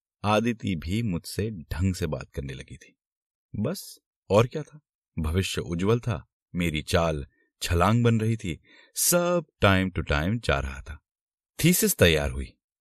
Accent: native